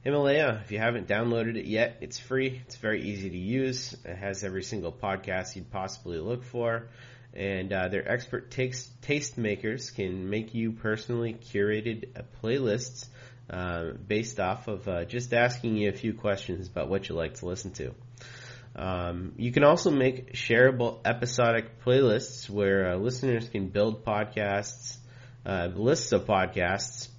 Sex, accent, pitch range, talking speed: male, American, 100-125 Hz, 160 wpm